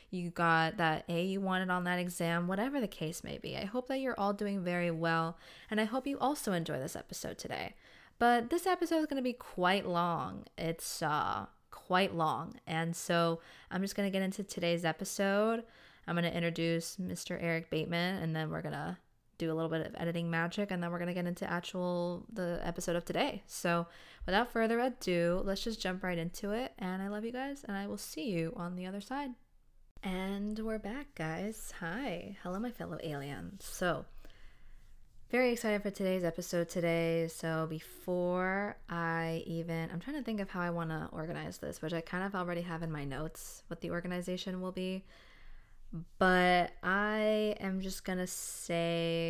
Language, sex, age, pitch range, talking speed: English, female, 20-39, 165-205 Hz, 195 wpm